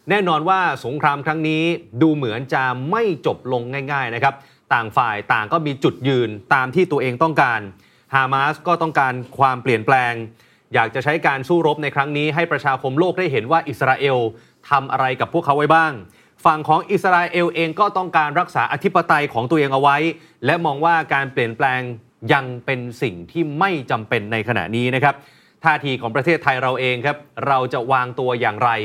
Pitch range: 130-165 Hz